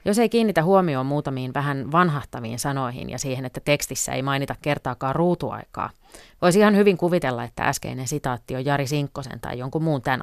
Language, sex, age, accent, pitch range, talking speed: Finnish, female, 30-49, native, 130-150 Hz, 175 wpm